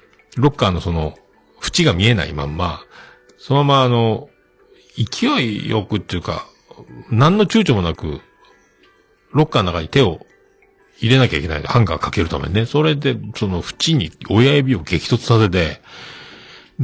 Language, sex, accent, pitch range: Japanese, male, native, 85-135 Hz